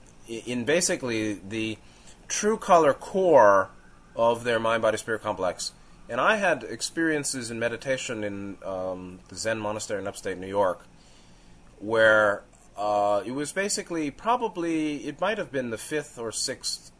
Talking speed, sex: 140 wpm, male